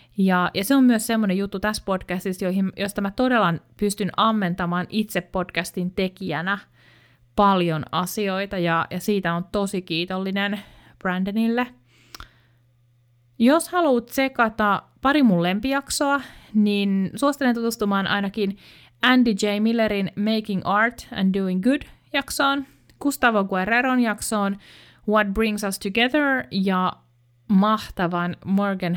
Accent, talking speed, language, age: native, 115 wpm, Finnish, 30-49